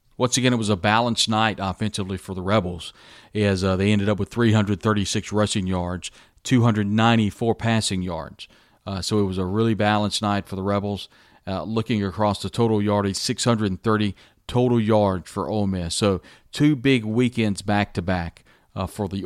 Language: English